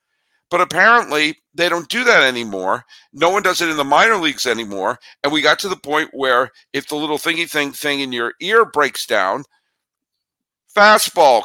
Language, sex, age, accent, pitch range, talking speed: English, male, 50-69, American, 115-180 Hz, 185 wpm